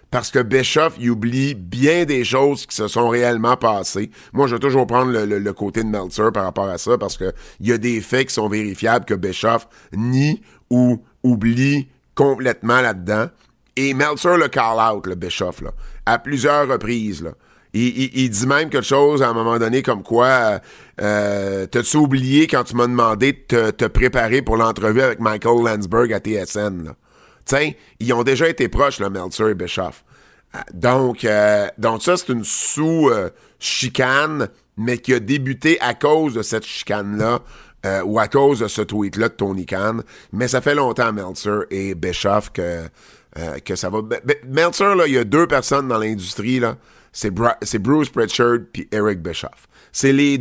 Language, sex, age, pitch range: French, male, 50-69, 105-135 Hz